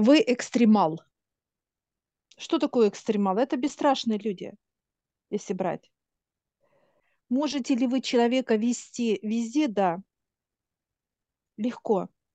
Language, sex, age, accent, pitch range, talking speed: Russian, female, 40-59, native, 210-255 Hz, 85 wpm